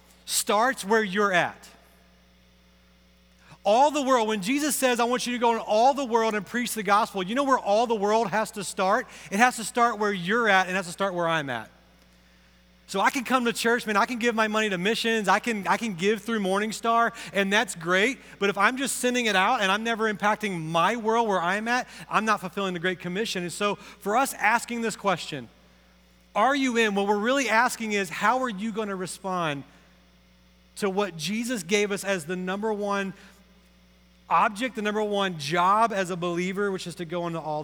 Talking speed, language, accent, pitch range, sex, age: 220 wpm, English, American, 175-220 Hz, male, 40-59